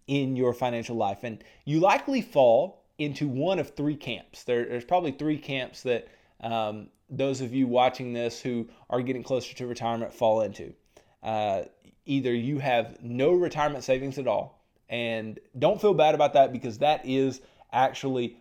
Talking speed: 165 wpm